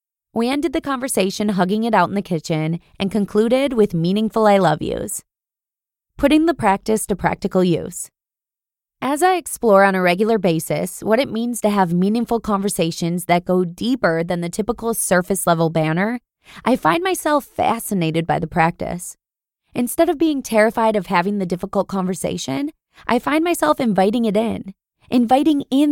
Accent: American